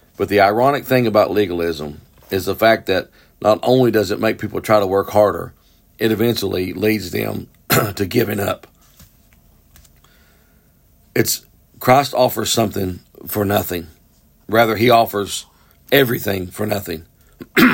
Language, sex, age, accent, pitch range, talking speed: English, male, 50-69, American, 85-110 Hz, 130 wpm